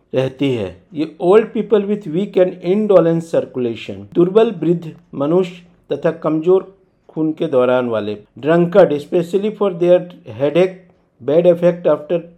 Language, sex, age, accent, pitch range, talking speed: Hindi, male, 50-69, native, 135-185 Hz, 130 wpm